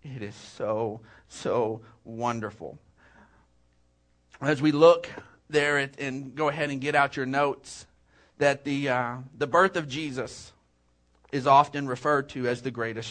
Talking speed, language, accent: 145 wpm, English, American